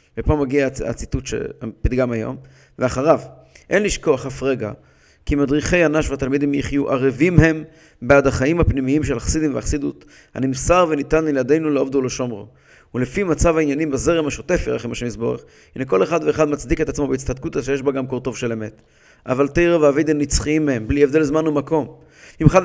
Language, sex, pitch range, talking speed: English, male, 140-170 Hz, 160 wpm